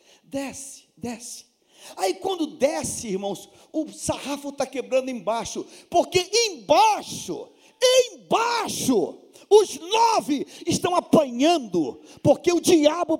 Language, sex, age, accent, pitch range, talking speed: Portuguese, male, 50-69, Brazilian, 200-305 Hz, 95 wpm